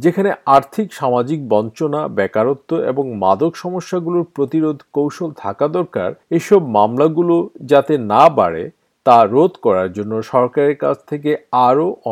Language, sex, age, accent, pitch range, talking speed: Bengali, male, 50-69, native, 120-180 Hz, 95 wpm